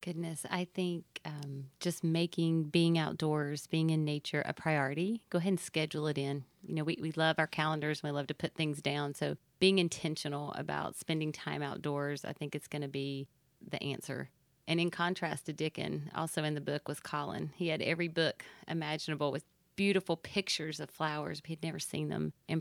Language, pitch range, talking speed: English, 150-170 Hz, 195 wpm